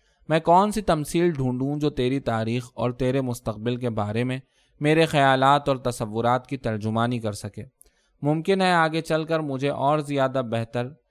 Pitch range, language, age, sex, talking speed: 115-145 Hz, Urdu, 20-39, male, 165 wpm